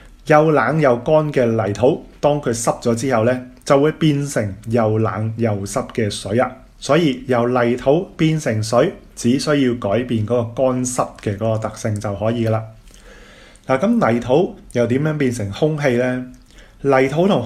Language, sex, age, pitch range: Chinese, male, 20-39, 110-140 Hz